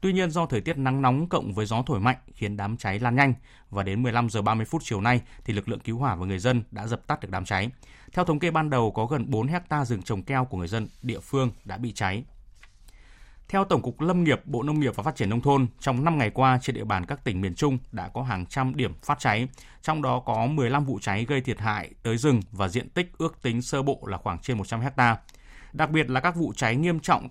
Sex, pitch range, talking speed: male, 110-145 Hz, 265 wpm